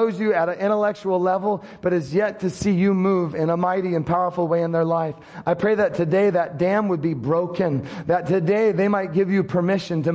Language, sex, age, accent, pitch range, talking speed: English, male, 30-49, American, 170-195 Hz, 225 wpm